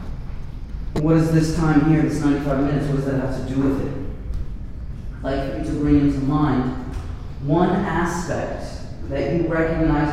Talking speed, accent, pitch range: 160 wpm, American, 110-140 Hz